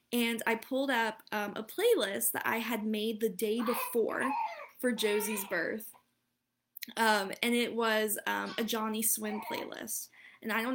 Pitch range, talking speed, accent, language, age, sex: 215-245 Hz, 160 wpm, American, English, 10-29, female